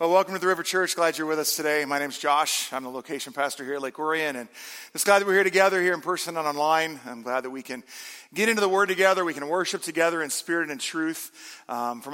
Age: 40-59